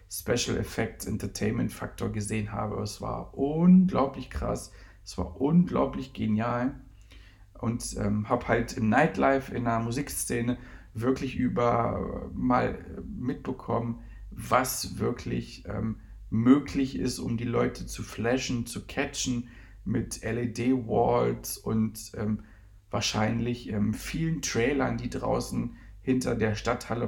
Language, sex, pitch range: German, male, 100-120 Hz